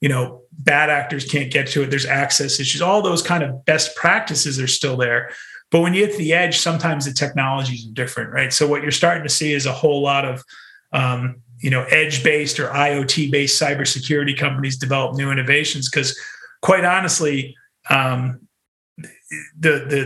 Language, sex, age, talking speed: English, male, 30-49, 180 wpm